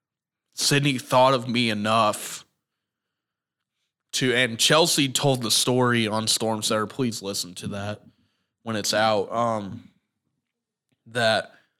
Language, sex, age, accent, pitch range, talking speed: English, male, 20-39, American, 115-140 Hz, 115 wpm